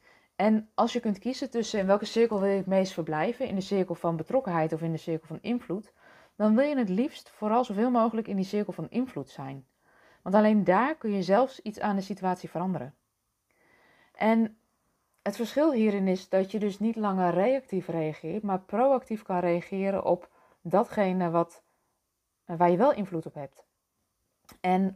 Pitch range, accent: 175-220 Hz, Dutch